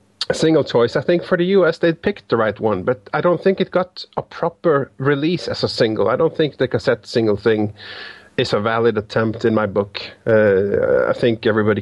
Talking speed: 220 wpm